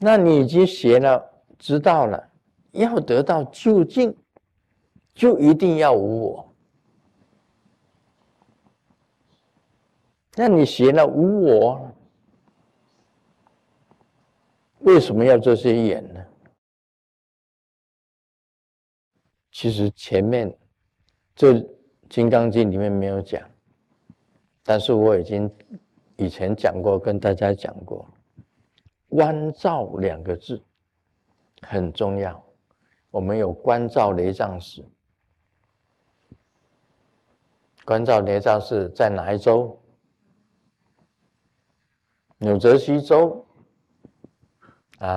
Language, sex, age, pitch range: Chinese, male, 50-69, 100-140 Hz